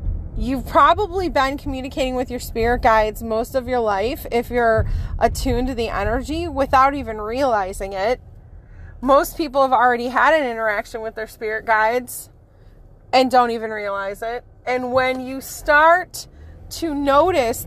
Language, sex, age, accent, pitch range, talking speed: English, female, 30-49, American, 215-270 Hz, 150 wpm